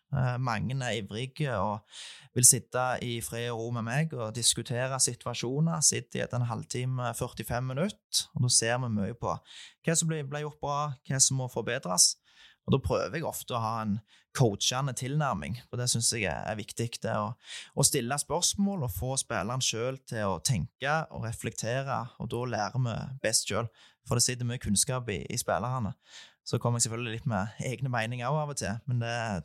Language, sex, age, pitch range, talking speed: English, male, 20-39, 115-140 Hz, 185 wpm